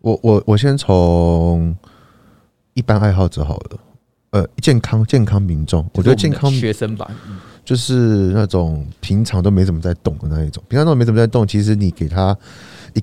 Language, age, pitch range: Chinese, 20-39, 90-115 Hz